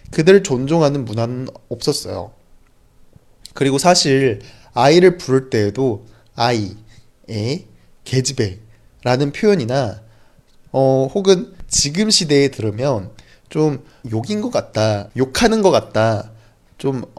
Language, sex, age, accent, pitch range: Chinese, male, 20-39, Korean, 110-165 Hz